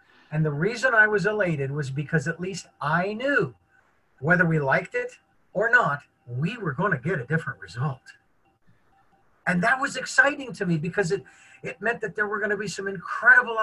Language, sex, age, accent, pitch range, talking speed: English, male, 50-69, American, 160-215 Hz, 195 wpm